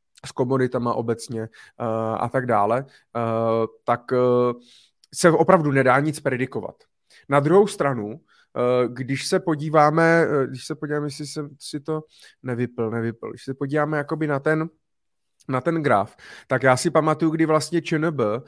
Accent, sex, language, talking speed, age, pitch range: native, male, Czech, 135 wpm, 30-49, 135-160 Hz